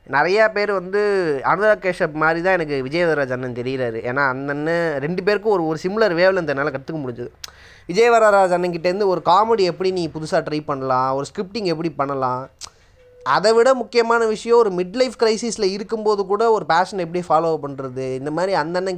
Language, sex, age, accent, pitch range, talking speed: Tamil, male, 20-39, native, 155-205 Hz, 175 wpm